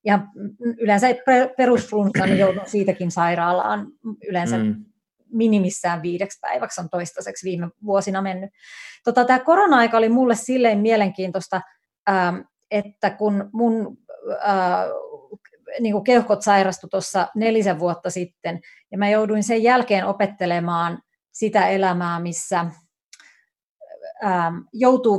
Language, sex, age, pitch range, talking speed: Finnish, female, 30-49, 180-225 Hz, 95 wpm